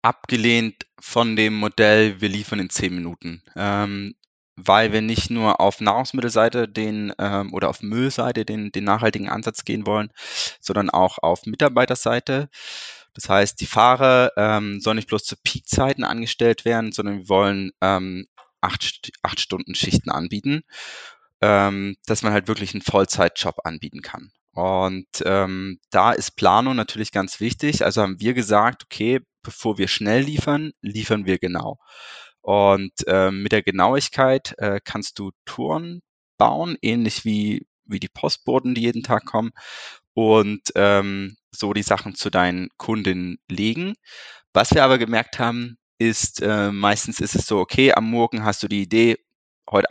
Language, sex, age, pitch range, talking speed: German, male, 20-39, 100-115 Hz, 155 wpm